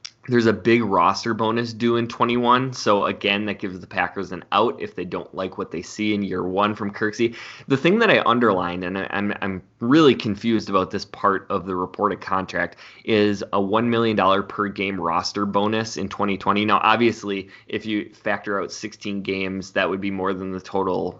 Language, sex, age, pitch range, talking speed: English, male, 20-39, 95-110 Hz, 200 wpm